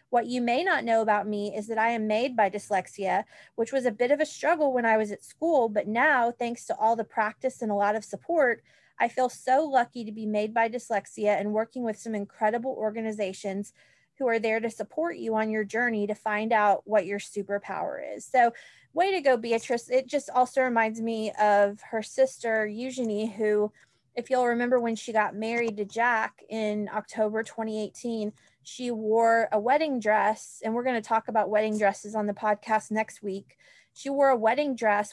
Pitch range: 210-240 Hz